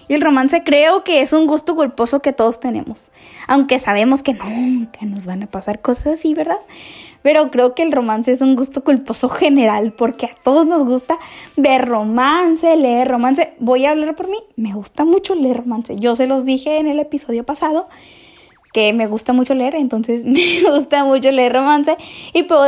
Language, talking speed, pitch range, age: Spanish, 195 wpm, 245-305 Hz, 10-29